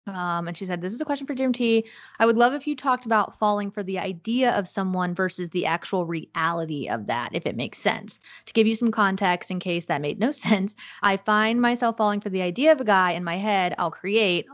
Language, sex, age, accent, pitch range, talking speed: English, female, 20-39, American, 180-225 Hz, 250 wpm